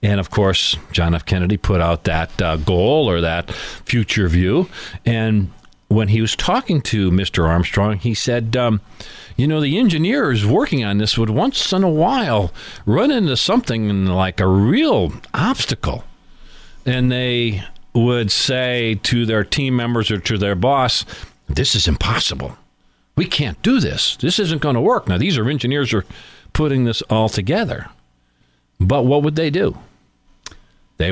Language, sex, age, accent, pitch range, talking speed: English, male, 50-69, American, 100-150 Hz, 160 wpm